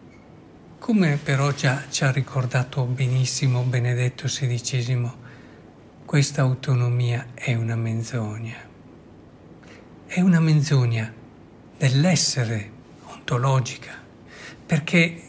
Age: 60-79